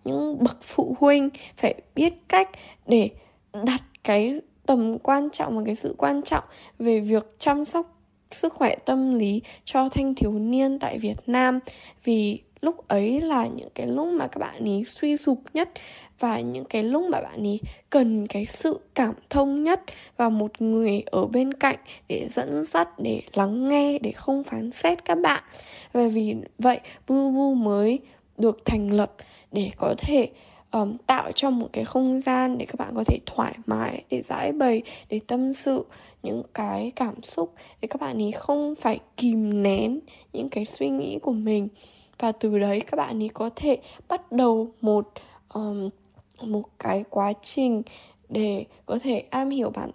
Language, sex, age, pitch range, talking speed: Vietnamese, female, 10-29, 215-270 Hz, 180 wpm